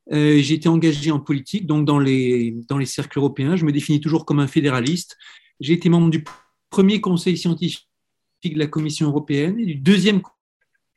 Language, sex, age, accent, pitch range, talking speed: French, male, 40-59, French, 135-165 Hz, 185 wpm